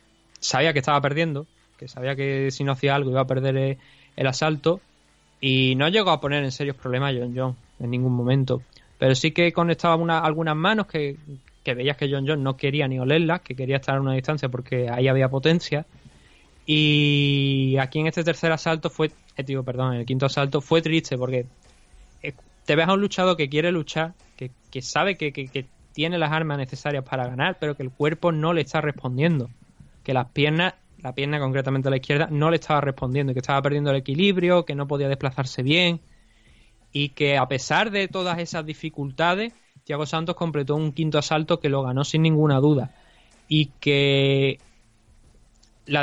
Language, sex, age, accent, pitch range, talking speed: Spanish, male, 20-39, Spanish, 130-160 Hz, 190 wpm